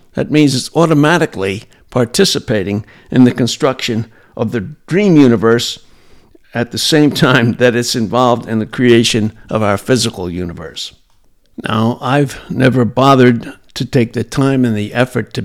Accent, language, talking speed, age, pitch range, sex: American, English, 150 wpm, 60-79, 110-130 Hz, male